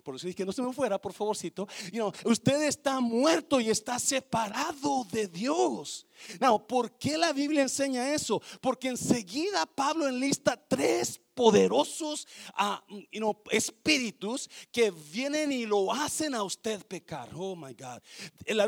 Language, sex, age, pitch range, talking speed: Spanish, male, 40-59, 190-255 Hz, 155 wpm